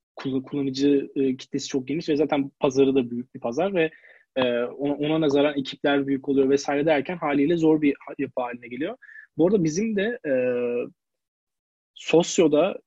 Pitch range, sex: 140-165 Hz, male